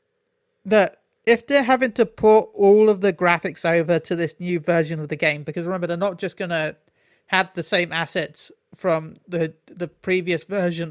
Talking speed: 180 wpm